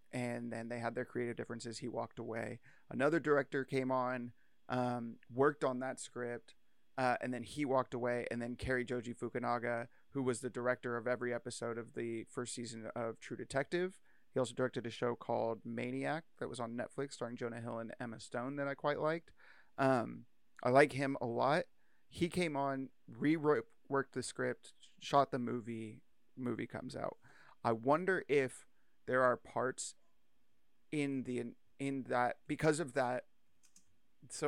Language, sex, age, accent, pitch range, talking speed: English, male, 30-49, American, 120-140 Hz, 170 wpm